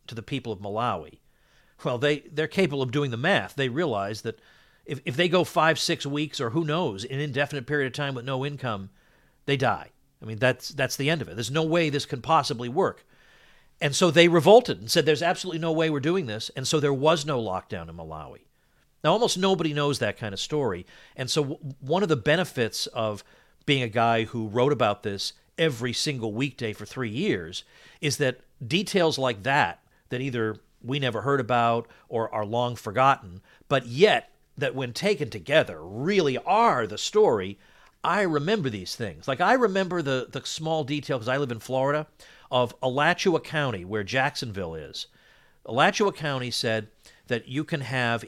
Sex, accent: male, American